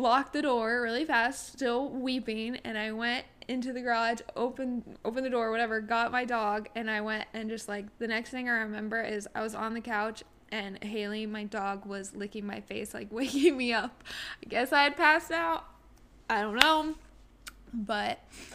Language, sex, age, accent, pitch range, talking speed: English, female, 10-29, American, 225-315 Hz, 195 wpm